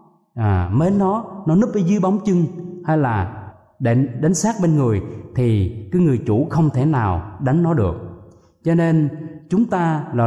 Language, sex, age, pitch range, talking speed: Vietnamese, male, 20-39, 110-175 Hz, 175 wpm